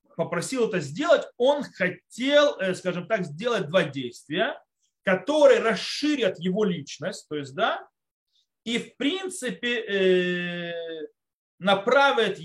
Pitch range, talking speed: 170-230 Hz, 100 wpm